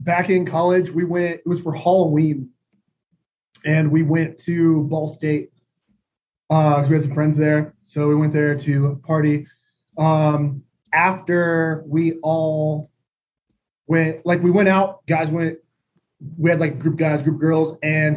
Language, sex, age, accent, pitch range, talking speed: English, male, 20-39, American, 155-180 Hz, 155 wpm